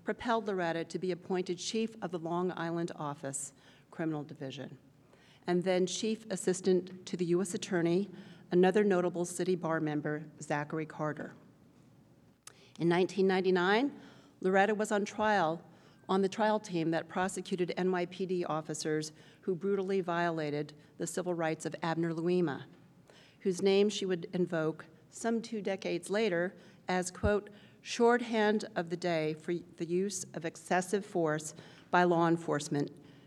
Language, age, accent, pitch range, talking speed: English, 50-69, American, 165-195 Hz, 135 wpm